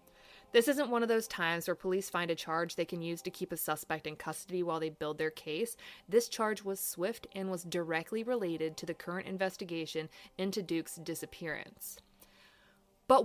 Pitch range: 170-215 Hz